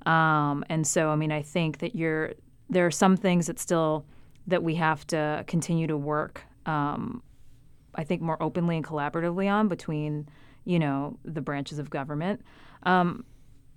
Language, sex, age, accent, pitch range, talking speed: English, female, 30-49, American, 145-170 Hz, 165 wpm